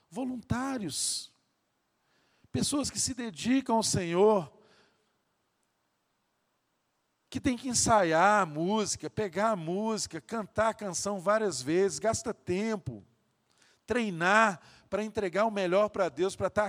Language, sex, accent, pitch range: Portuguese, male, Brazilian, 190-240 Hz